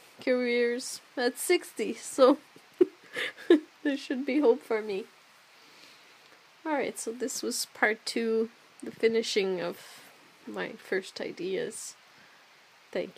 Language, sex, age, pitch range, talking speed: English, female, 30-49, 205-310 Hz, 105 wpm